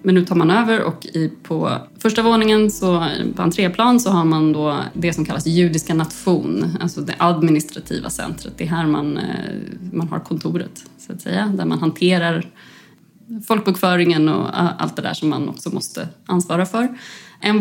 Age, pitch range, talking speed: 30-49, 170-205 Hz, 165 wpm